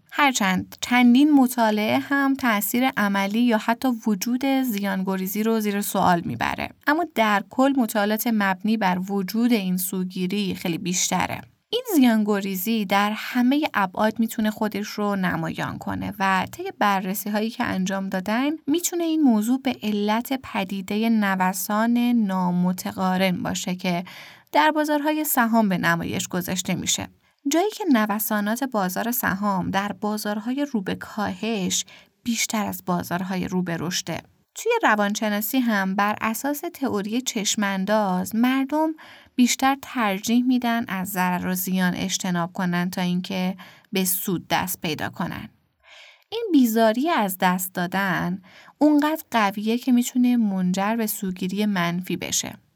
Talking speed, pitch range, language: 125 wpm, 190-245 Hz, Persian